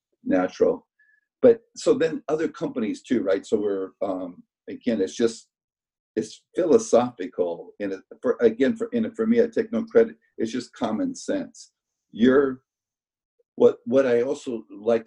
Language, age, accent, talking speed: English, 50-69, American, 145 wpm